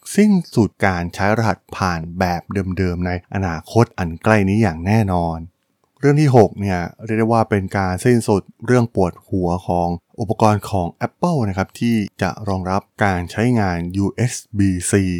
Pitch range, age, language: 95-125 Hz, 20-39, Thai